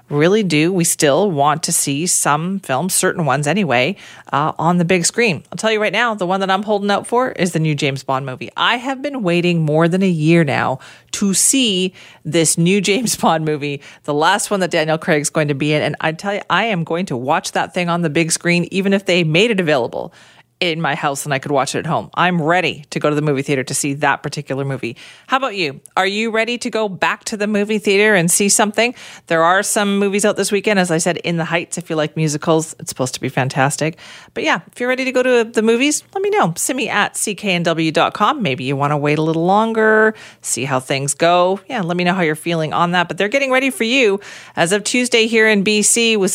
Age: 40-59